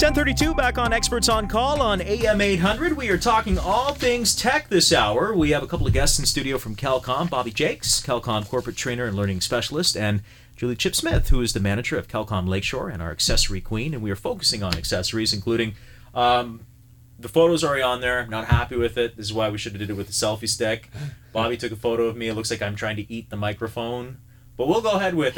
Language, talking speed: English, 240 wpm